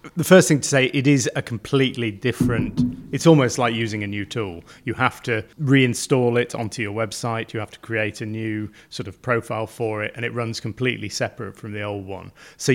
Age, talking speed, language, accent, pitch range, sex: 30-49, 215 wpm, English, British, 110-130 Hz, male